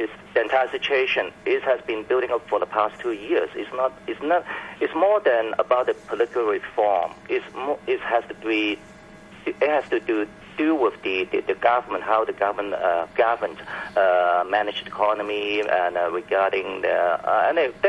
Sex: male